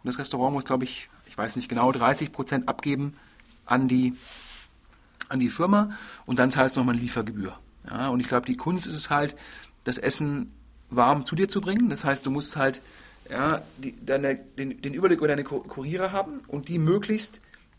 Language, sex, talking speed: German, male, 195 wpm